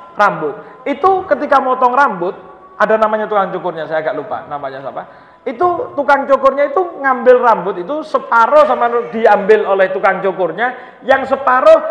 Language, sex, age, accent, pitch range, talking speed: Indonesian, male, 40-59, native, 180-265 Hz, 145 wpm